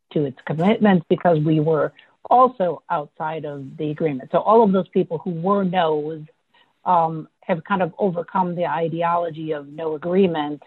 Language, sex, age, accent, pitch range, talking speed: English, female, 50-69, American, 155-185 Hz, 165 wpm